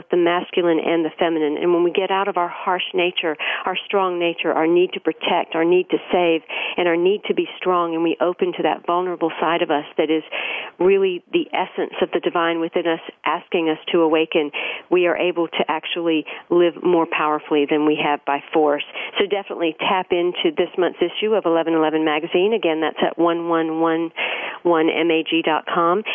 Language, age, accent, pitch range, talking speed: English, 50-69, American, 160-185 Hz, 185 wpm